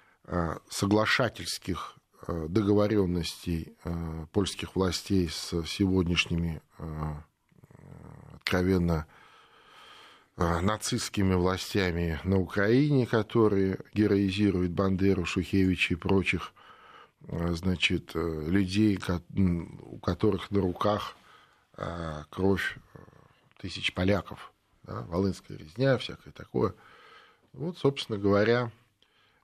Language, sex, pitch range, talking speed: Russian, male, 85-105 Hz, 65 wpm